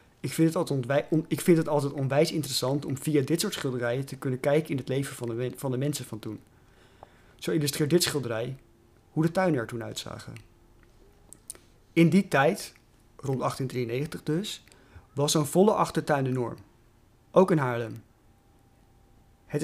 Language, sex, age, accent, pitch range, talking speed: Dutch, male, 30-49, Dutch, 115-155 Hz, 170 wpm